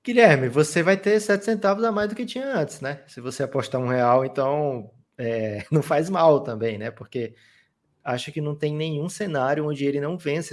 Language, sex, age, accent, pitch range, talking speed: Portuguese, male, 20-39, Brazilian, 115-150 Hz, 205 wpm